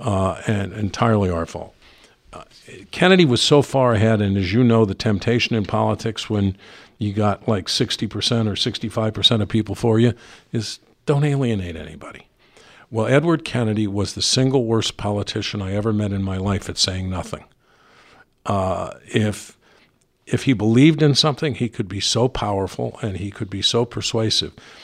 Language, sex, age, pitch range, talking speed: English, male, 50-69, 100-120 Hz, 165 wpm